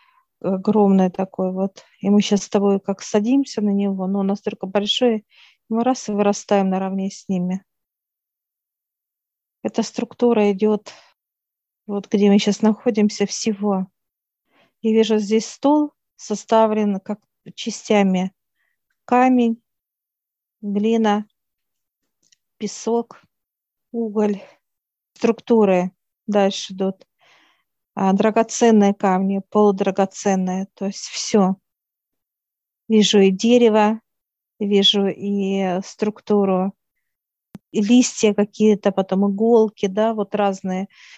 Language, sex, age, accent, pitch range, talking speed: Russian, female, 40-59, native, 195-225 Hz, 95 wpm